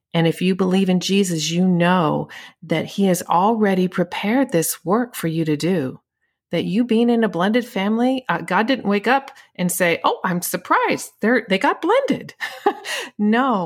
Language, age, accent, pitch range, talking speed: English, 40-59, American, 170-220 Hz, 175 wpm